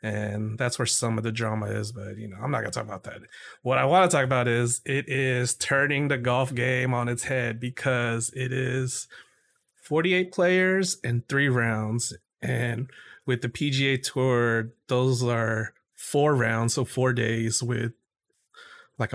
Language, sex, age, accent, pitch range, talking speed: English, male, 30-49, American, 115-130 Hz, 175 wpm